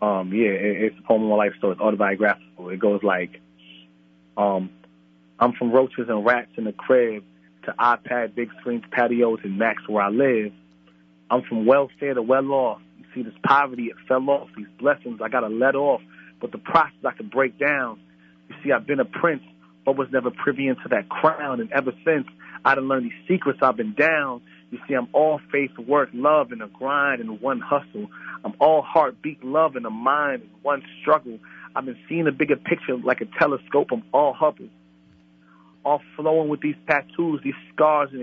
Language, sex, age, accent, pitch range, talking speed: English, male, 30-49, American, 100-140 Hz, 200 wpm